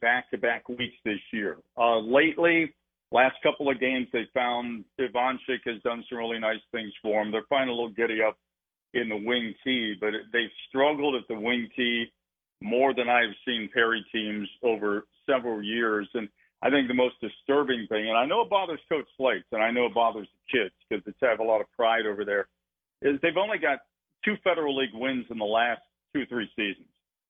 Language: English